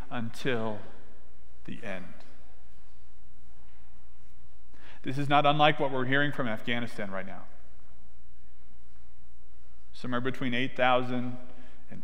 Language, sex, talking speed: English, male, 90 wpm